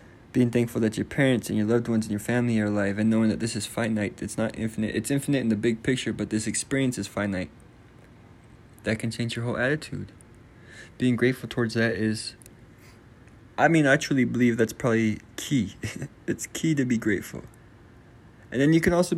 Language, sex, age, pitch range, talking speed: English, male, 20-39, 115-135 Hz, 195 wpm